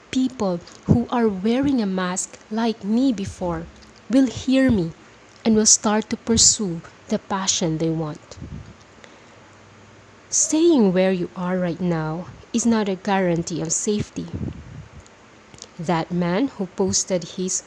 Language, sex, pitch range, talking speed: English, female, 180-235 Hz, 130 wpm